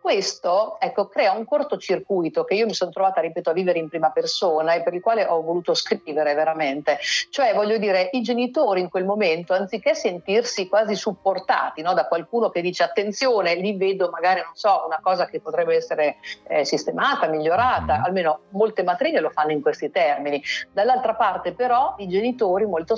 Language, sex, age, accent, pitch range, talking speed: Italian, female, 50-69, native, 170-225 Hz, 180 wpm